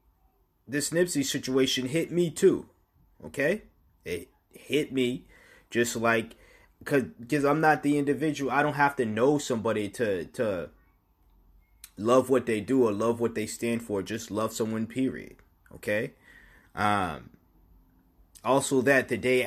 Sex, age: male, 20-39